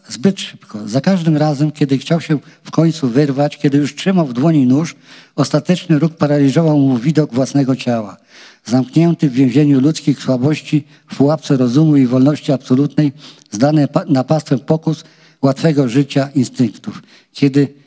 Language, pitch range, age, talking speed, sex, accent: Polish, 130-160 Hz, 50-69, 140 wpm, male, native